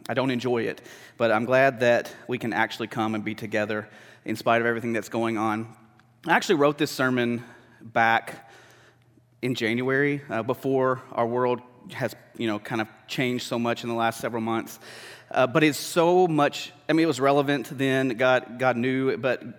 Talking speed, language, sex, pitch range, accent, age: 190 wpm, English, male, 115-145 Hz, American, 30-49